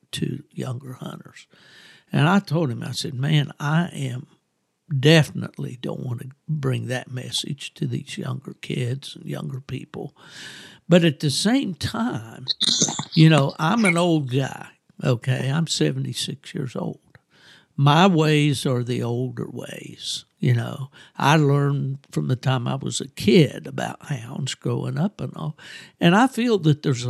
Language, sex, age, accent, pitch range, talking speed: English, male, 60-79, American, 130-165 Hz, 155 wpm